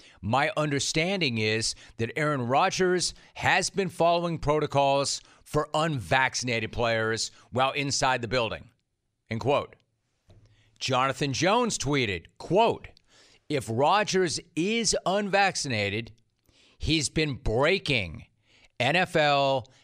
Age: 40-59